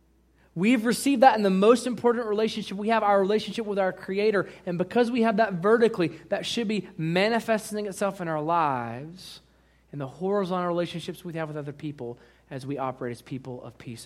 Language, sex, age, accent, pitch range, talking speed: English, male, 30-49, American, 130-185 Hz, 190 wpm